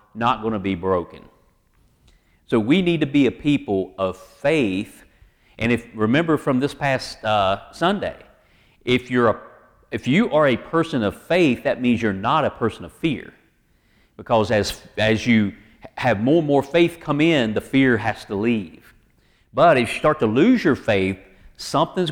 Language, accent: English, American